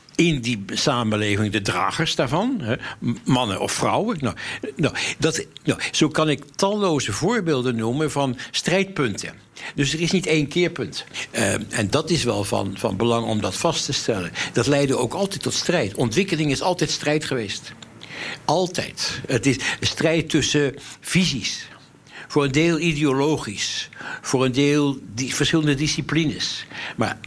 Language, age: English, 60-79